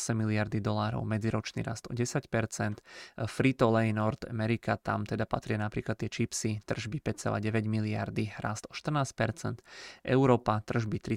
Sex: male